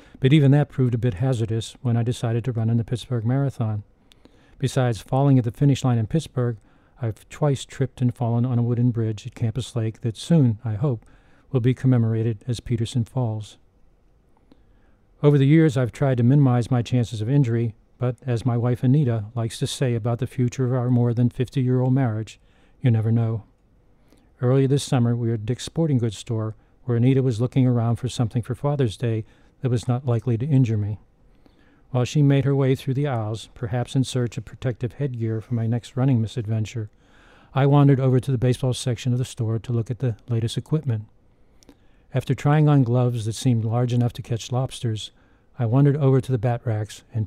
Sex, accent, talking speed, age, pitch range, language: male, American, 200 wpm, 50-69, 115-130 Hz, English